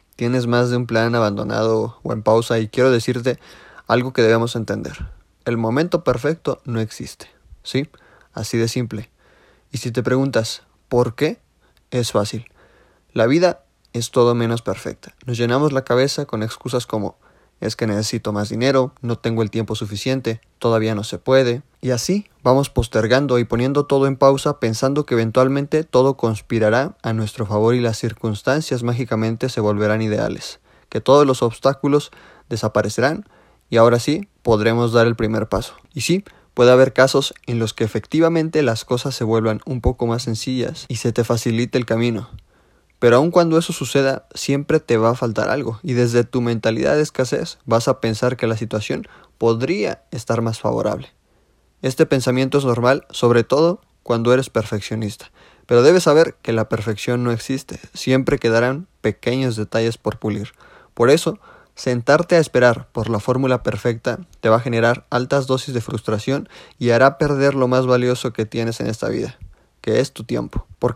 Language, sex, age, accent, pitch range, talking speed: Spanish, male, 20-39, Mexican, 115-130 Hz, 170 wpm